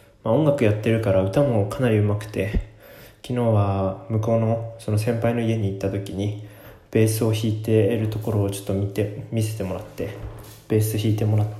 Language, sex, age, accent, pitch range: Japanese, male, 20-39, native, 105-125 Hz